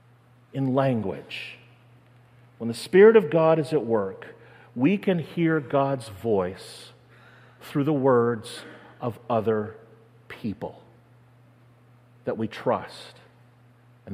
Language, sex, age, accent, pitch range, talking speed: English, male, 40-59, American, 120-155 Hz, 105 wpm